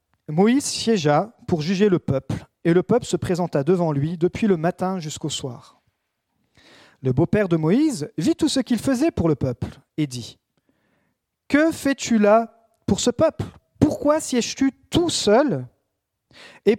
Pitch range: 150-240 Hz